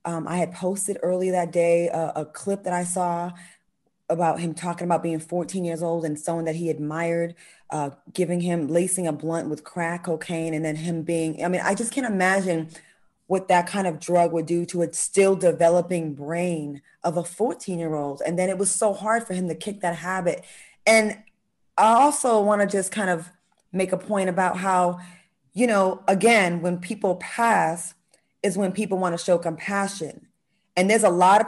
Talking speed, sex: 195 wpm, female